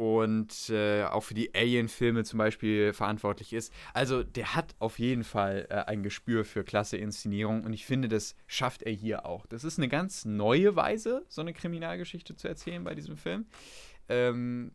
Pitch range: 105-140 Hz